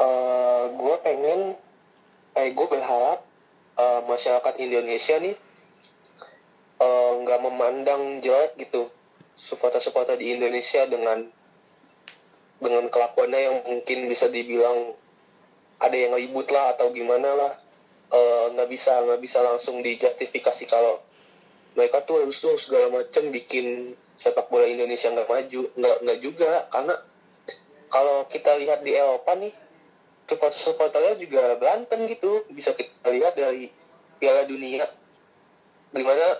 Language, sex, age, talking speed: Indonesian, male, 20-39, 120 wpm